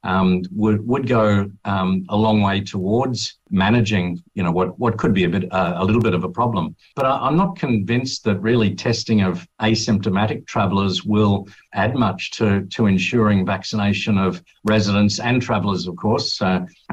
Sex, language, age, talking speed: male, English, 50-69, 180 wpm